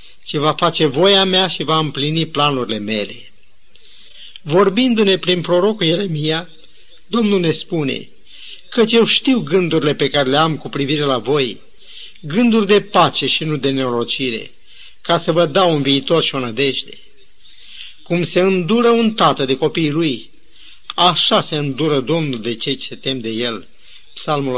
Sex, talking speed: male, 155 wpm